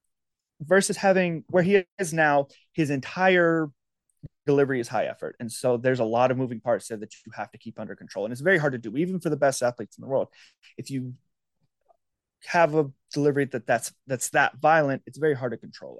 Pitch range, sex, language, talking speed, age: 115-145 Hz, male, English, 215 wpm, 30-49